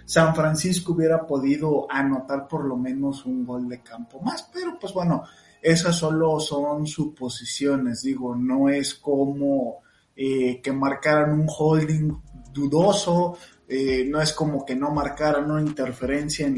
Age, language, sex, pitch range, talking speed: 20-39, Spanish, male, 130-155 Hz, 145 wpm